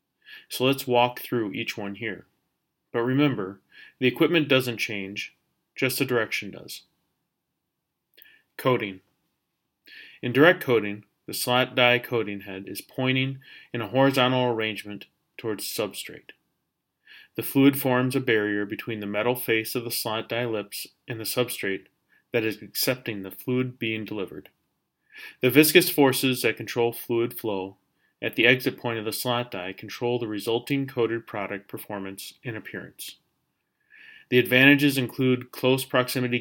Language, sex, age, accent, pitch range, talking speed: English, male, 30-49, American, 105-125 Hz, 140 wpm